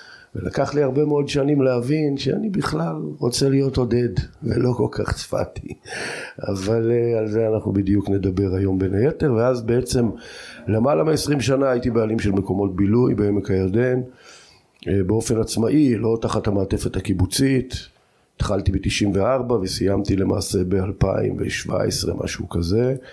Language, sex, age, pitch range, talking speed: Hebrew, male, 50-69, 100-125 Hz, 125 wpm